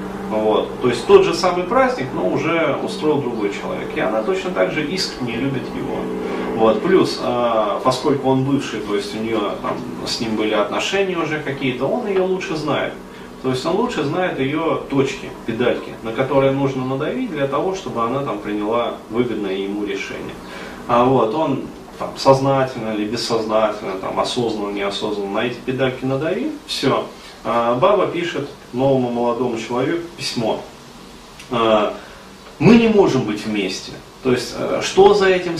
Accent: native